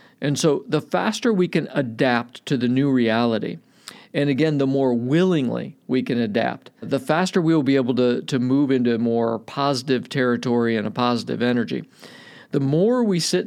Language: English